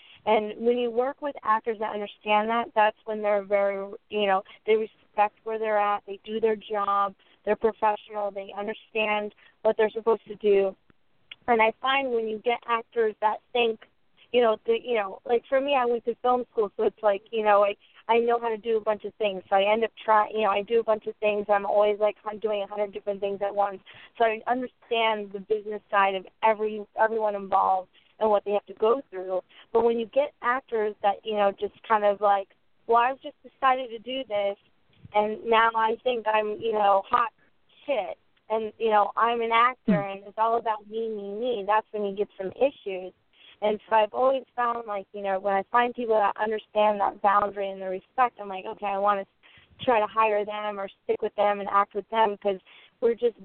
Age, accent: 20-39, American